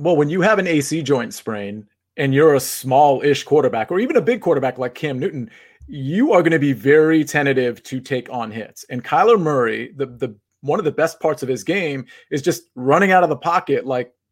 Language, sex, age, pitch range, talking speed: English, male, 30-49, 130-175 Hz, 220 wpm